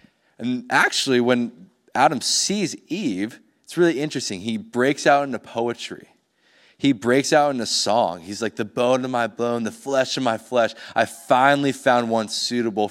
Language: English